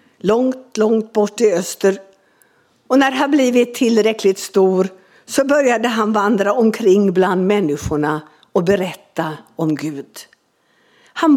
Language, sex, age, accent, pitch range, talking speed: Swedish, female, 60-79, native, 185-255 Hz, 120 wpm